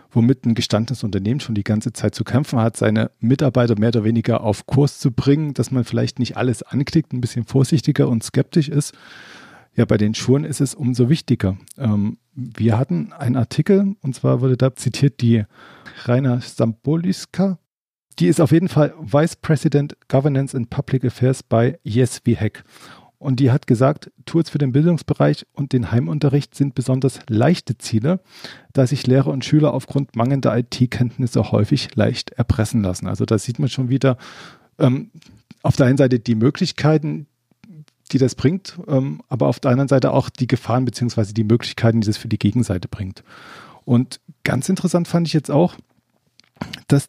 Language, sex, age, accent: German, male, 40-59, German